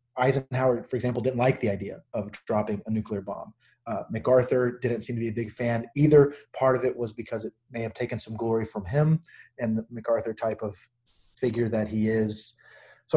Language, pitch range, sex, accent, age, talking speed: English, 115-135 Hz, male, American, 30-49, 205 wpm